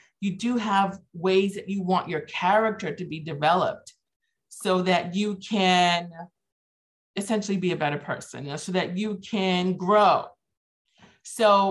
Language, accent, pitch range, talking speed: English, American, 160-200 Hz, 140 wpm